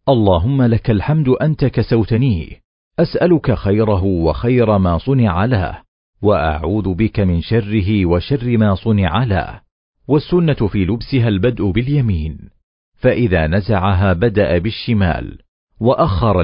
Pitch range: 95-125 Hz